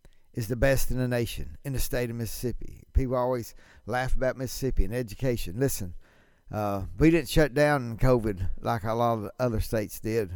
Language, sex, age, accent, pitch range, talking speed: English, male, 60-79, American, 105-135 Hz, 190 wpm